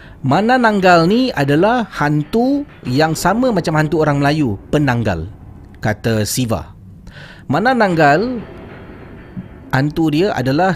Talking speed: 100 wpm